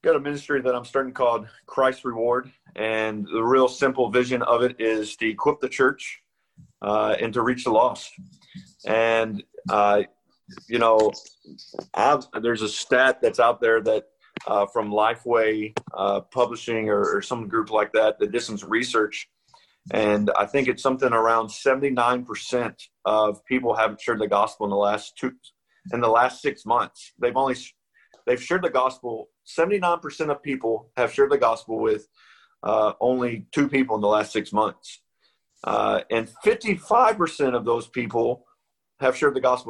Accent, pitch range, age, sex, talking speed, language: American, 110-140 Hz, 40-59, male, 165 wpm, English